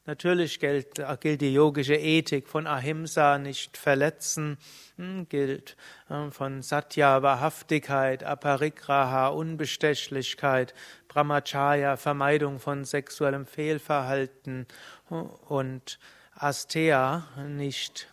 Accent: German